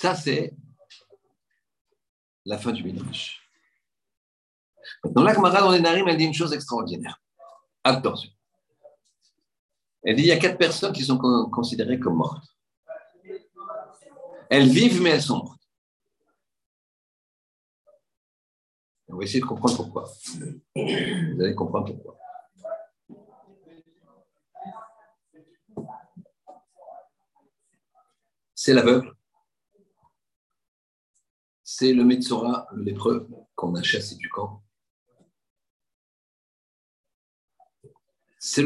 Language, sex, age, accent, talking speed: French, male, 50-69, French, 90 wpm